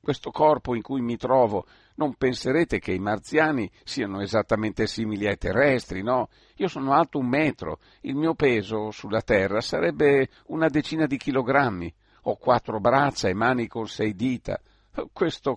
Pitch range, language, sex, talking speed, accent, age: 110-140 Hz, Italian, male, 160 wpm, native, 50-69